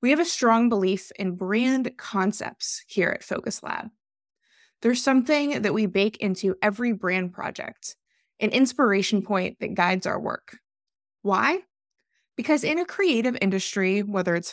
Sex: female